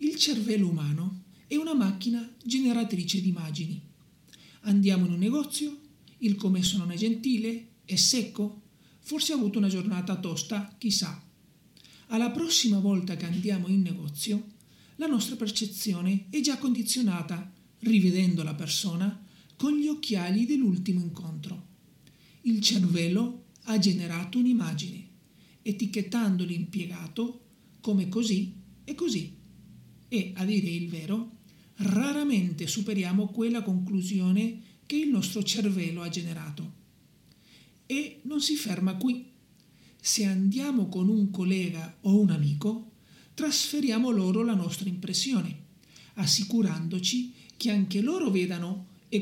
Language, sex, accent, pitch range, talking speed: Italian, male, native, 180-230 Hz, 120 wpm